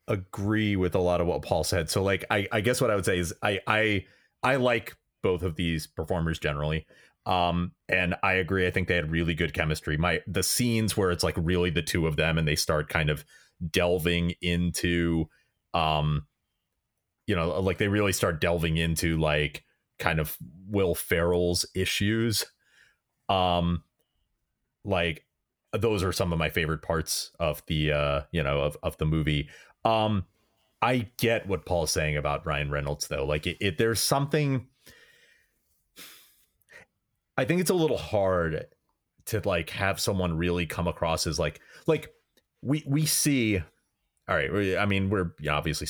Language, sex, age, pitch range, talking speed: English, male, 30-49, 80-105 Hz, 165 wpm